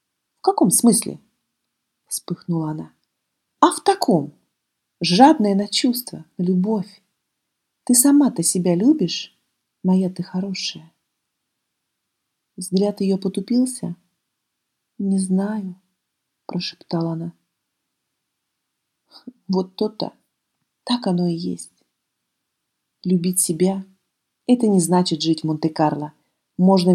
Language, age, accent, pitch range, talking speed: Russian, 40-59, native, 175-210 Hz, 90 wpm